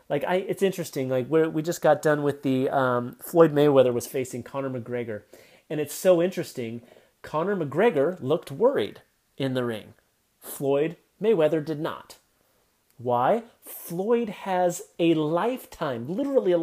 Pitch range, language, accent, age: 145-200 Hz, English, American, 30-49